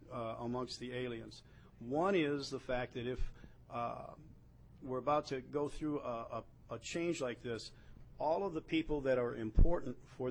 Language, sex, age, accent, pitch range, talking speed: English, male, 50-69, American, 115-140 Hz, 170 wpm